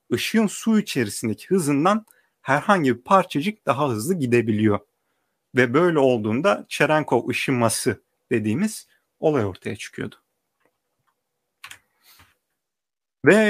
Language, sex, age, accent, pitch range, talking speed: Turkish, male, 40-59, native, 120-175 Hz, 90 wpm